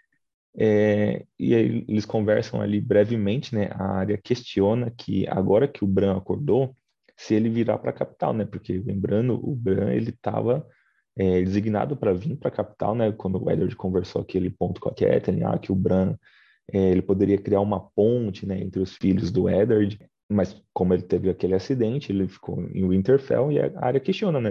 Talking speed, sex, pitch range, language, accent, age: 195 wpm, male, 95-110 Hz, Portuguese, Brazilian, 20-39